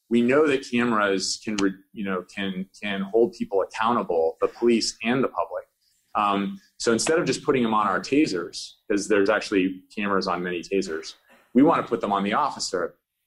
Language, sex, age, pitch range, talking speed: English, male, 30-49, 100-125 Hz, 185 wpm